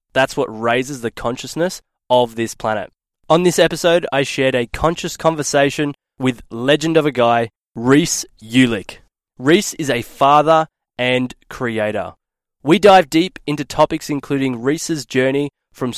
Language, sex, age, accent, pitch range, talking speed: English, male, 20-39, Australian, 125-155 Hz, 145 wpm